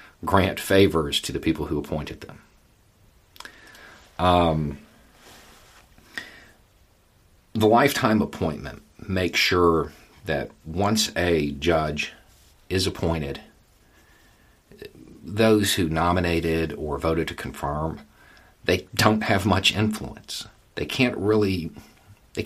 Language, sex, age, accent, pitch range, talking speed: English, male, 50-69, American, 80-105 Hz, 95 wpm